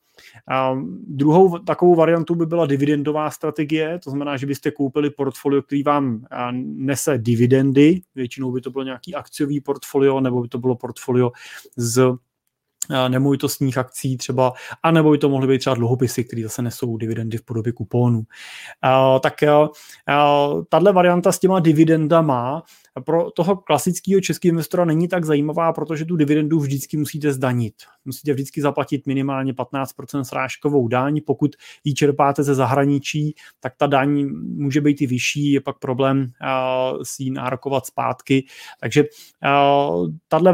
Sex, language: male, Czech